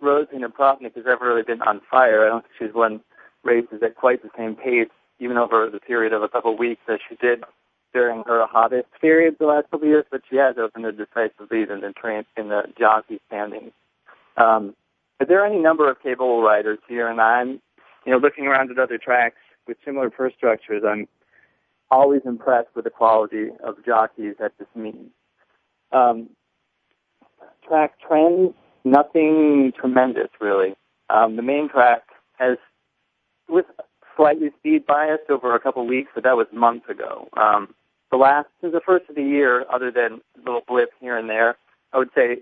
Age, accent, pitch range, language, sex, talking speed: 40-59, American, 110-140 Hz, English, male, 180 wpm